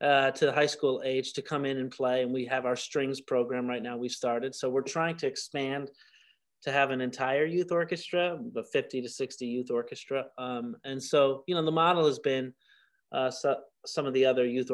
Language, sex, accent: English, male, American